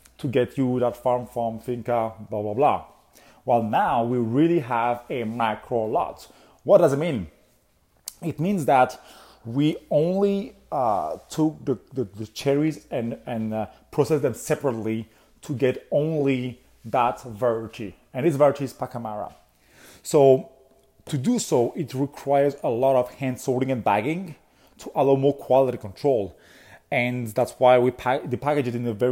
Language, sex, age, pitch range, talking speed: English, male, 30-49, 115-145 Hz, 155 wpm